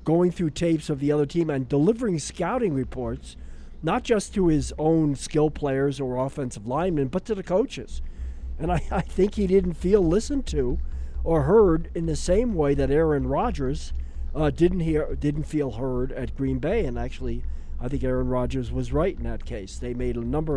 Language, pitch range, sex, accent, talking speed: English, 120-160 Hz, male, American, 195 wpm